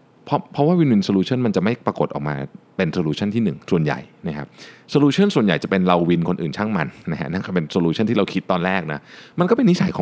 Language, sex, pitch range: Thai, male, 85-125 Hz